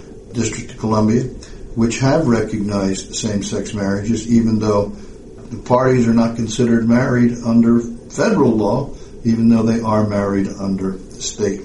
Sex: male